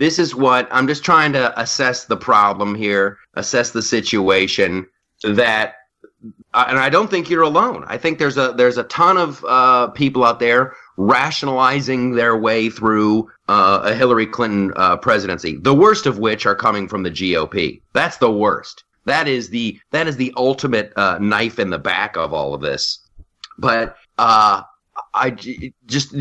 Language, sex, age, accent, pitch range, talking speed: English, male, 30-49, American, 110-135 Hz, 170 wpm